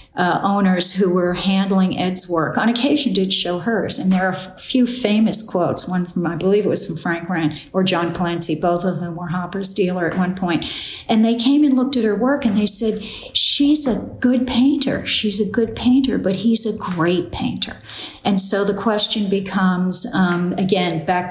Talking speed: 205 wpm